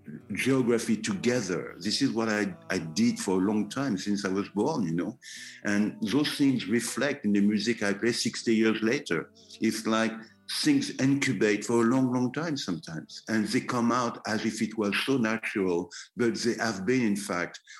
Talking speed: 190 wpm